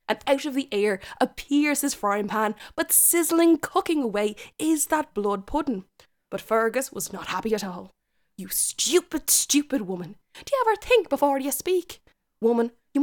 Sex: female